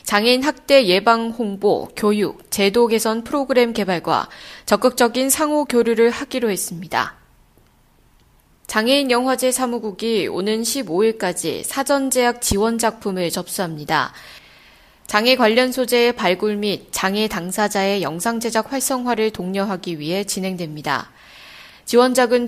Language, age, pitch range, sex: Korean, 20-39, 195-245 Hz, female